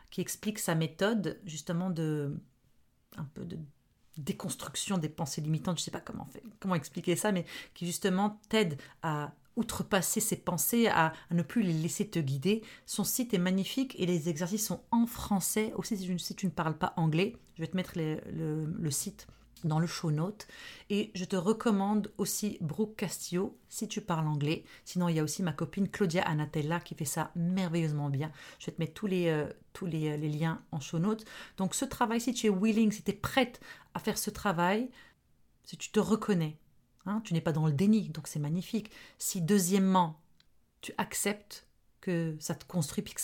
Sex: female